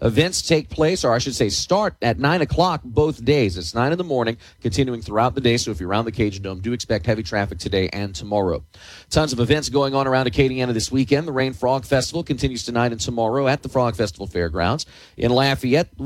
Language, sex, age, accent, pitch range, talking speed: English, male, 40-59, American, 115-160 Hz, 225 wpm